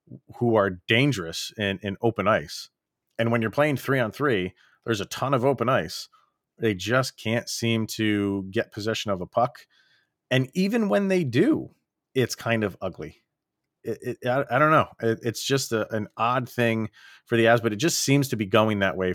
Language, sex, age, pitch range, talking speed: English, male, 30-49, 100-130 Hz, 190 wpm